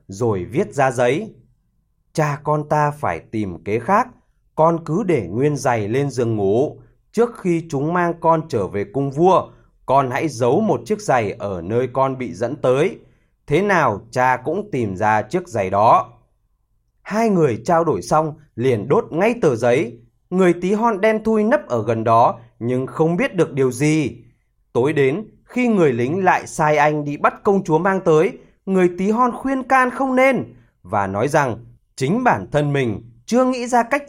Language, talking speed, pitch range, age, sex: Vietnamese, 185 wpm, 120-180 Hz, 20-39, male